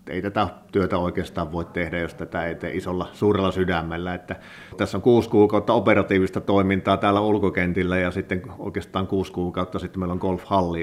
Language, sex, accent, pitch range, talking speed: Finnish, male, native, 85-100 Hz, 170 wpm